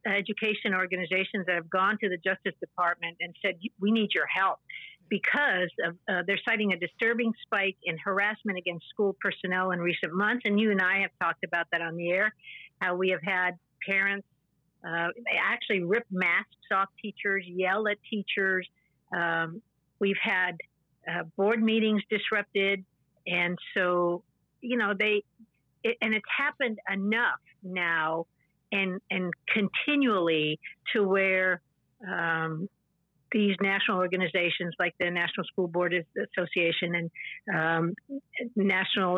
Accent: American